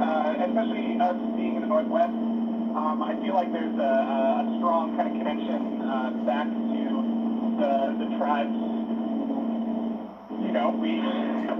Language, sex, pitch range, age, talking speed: English, male, 230-295 Hz, 30-49, 135 wpm